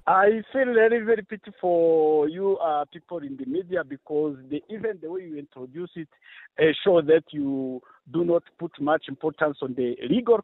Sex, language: male, English